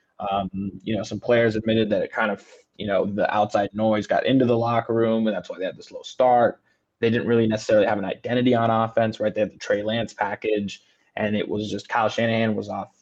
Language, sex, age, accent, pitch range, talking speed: English, male, 20-39, American, 105-115 Hz, 240 wpm